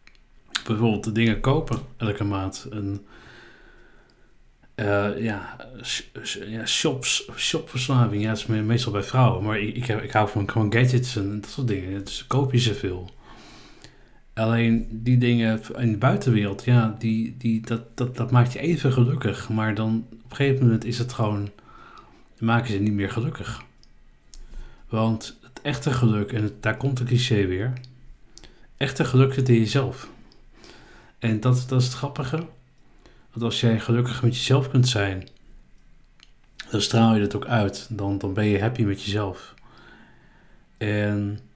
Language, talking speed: Dutch, 160 wpm